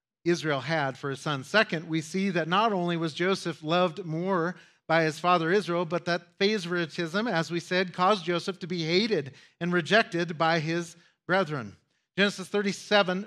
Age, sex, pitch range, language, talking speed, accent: 40-59, male, 145-185 Hz, English, 165 wpm, American